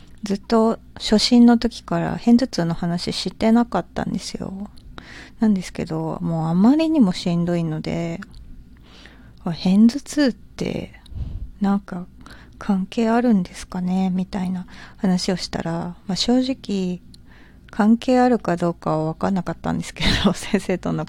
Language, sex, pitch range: Japanese, female, 175-215 Hz